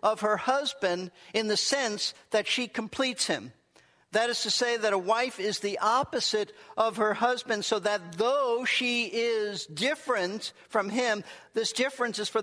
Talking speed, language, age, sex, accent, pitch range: 170 wpm, English, 50-69, male, American, 175-235 Hz